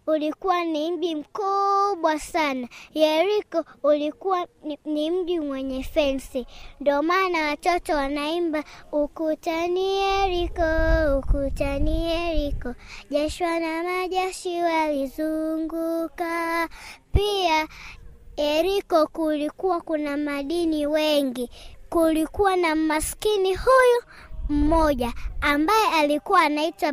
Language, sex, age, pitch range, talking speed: Swahili, male, 20-39, 290-360 Hz, 80 wpm